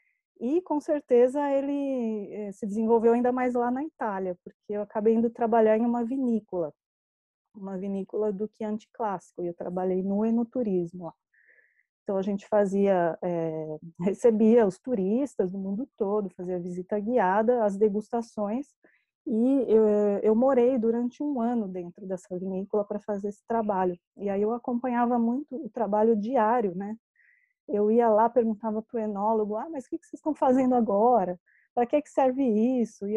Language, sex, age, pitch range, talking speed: English, female, 20-39, 200-250 Hz, 165 wpm